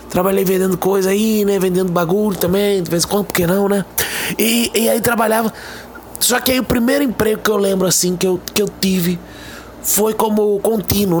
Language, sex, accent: Portuguese, male, Brazilian